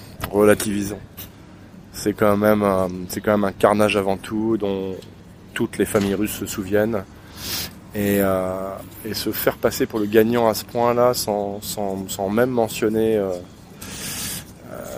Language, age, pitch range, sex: French, 20-39, 95-110 Hz, male